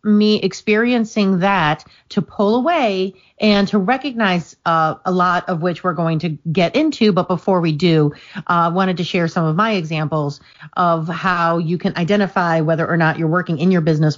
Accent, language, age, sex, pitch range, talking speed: American, English, 30-49, female, 165-215 Hz, 190 wpm